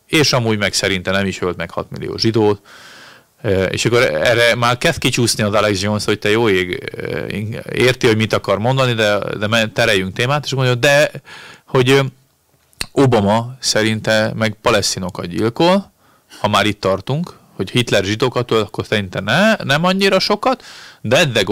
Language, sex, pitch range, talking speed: Hungarian, male, 100-130 Hz, 160 wpm